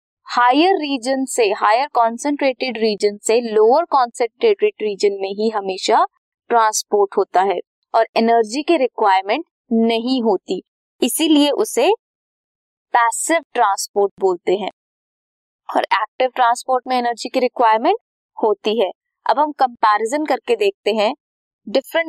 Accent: native